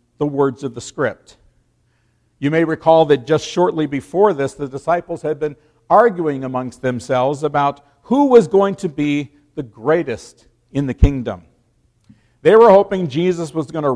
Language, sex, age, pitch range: English, male, 50-69, 120-165 Hz